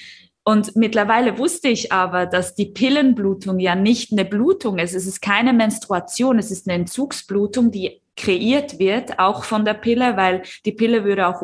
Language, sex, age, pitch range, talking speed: German, female, 20-39, 190-240 Hz, 175 wpm